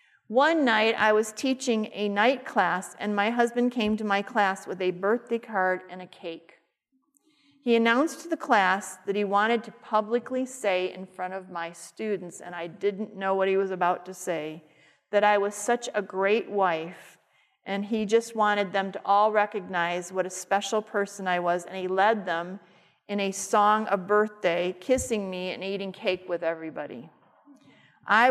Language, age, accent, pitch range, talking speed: English, 40-59, American, 180-220 Hz, 180 wpm